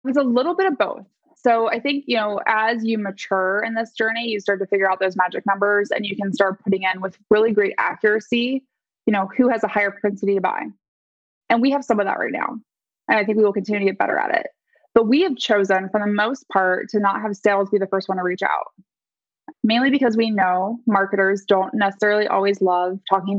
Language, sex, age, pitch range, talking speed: English, female, 20-39, 200-250 Hz, 235 wpm